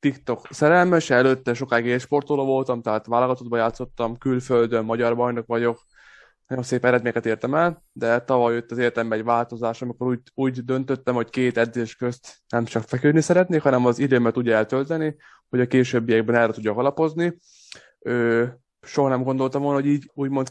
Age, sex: 20-39, male